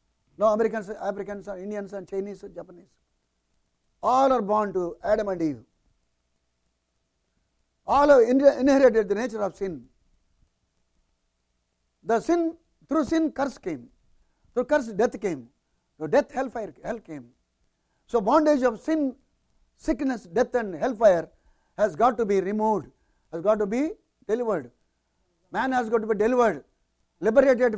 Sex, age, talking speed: male, 60-79, 140 wpm